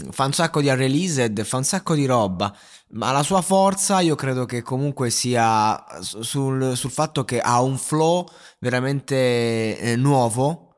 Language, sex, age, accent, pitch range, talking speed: Italian, male, 20-39, native, 115-155 Hz, 160 wpm